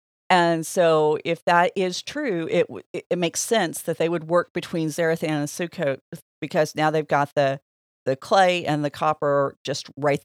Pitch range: 150-190 Hz